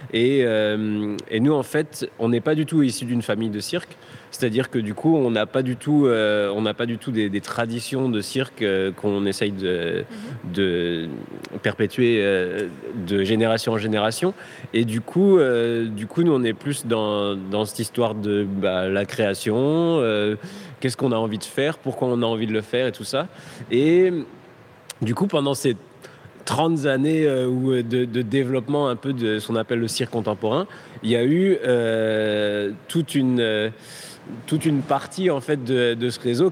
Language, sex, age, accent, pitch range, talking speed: French, male, 30-49, French, 110-145 Hz, 190 wpm